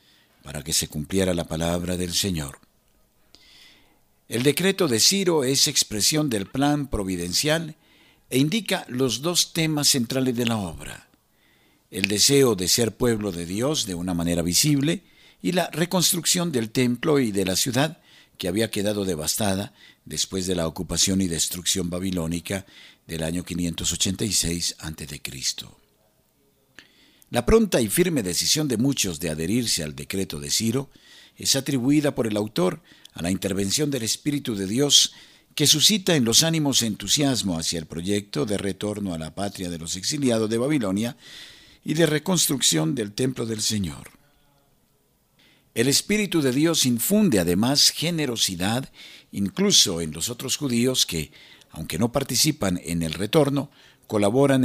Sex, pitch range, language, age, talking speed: male, 90-145 Hz, Spanish, 50-69, 145 wpm